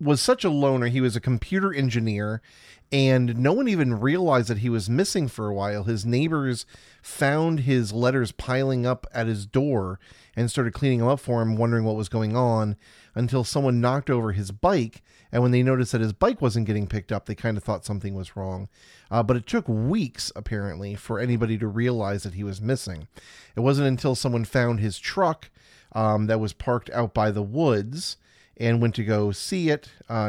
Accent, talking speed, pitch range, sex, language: American, 205 wpm, 105-130 Hz, male, English